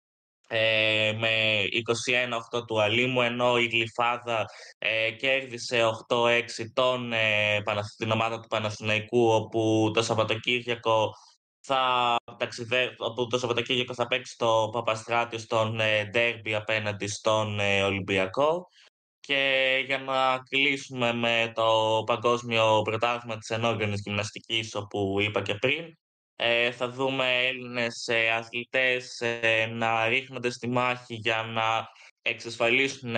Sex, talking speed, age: male, 110 wpm, 20-39